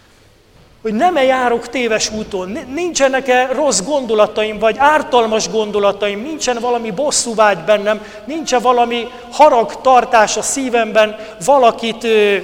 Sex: male